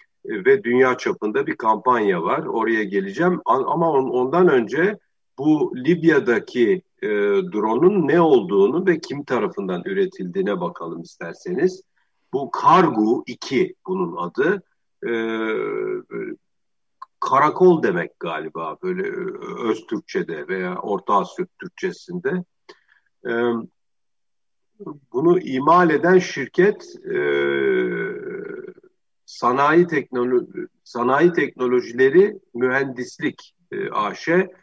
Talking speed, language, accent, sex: 90 wpm, Turkish, native, male